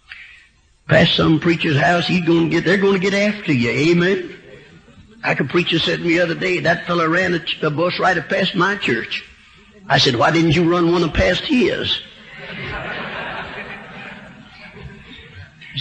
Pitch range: 165-200 Hz